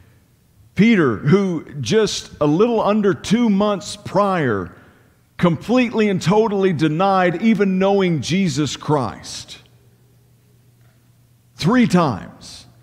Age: 50-69